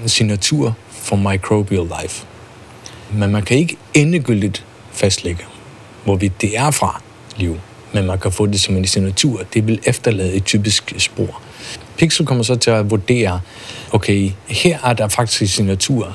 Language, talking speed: Danish, 155 wpm